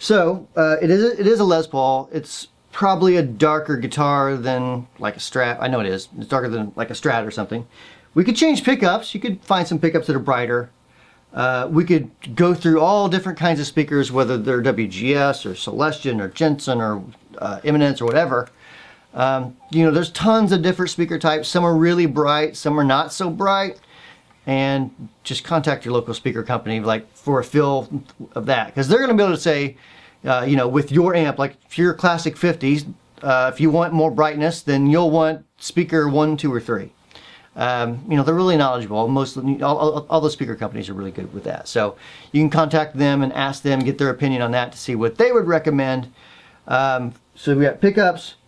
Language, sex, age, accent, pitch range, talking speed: English, male, 40-59, American, 130-170 Hz, 210 wpm